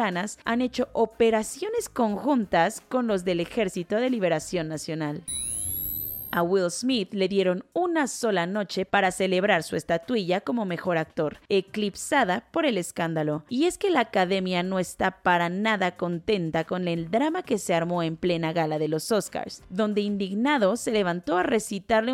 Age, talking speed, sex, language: 30-49, 155 wpm, female, Spanish